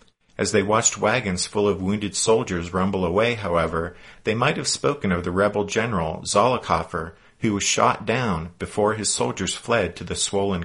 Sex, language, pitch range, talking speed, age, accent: male, English, 90-110 Hz, 175 wpm, 50-69, American